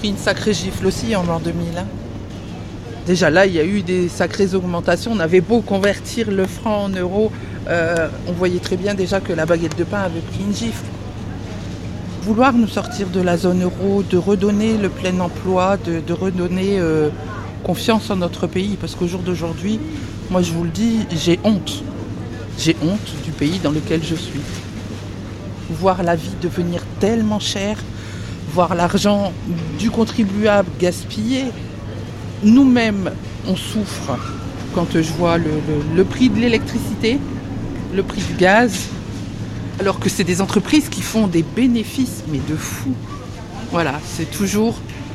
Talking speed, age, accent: 160 wpm, 60-79, French